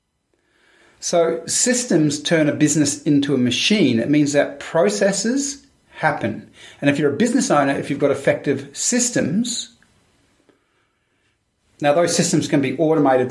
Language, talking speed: English, 135 wpm